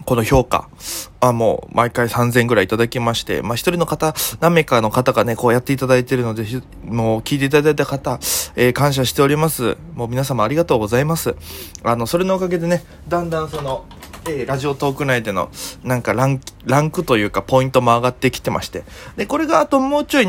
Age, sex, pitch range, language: 20-39, male, 115-170 Hz, Japanese